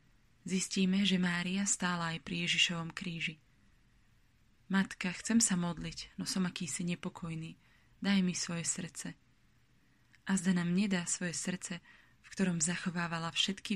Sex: female